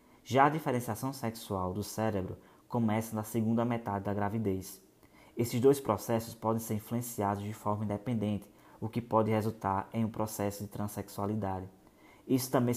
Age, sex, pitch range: 20-39, male, 110-125 Hz